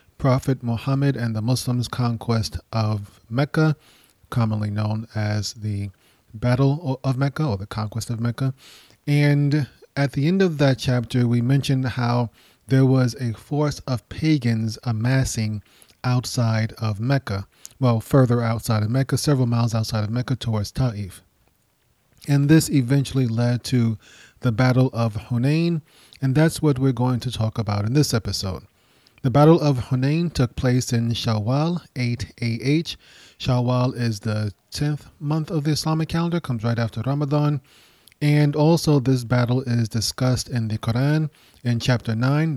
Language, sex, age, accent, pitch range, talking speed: English, male, 30-49, American, 115-140 Hz, 150 wpm